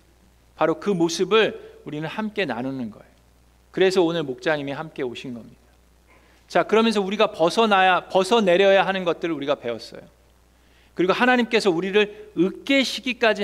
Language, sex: Korean, male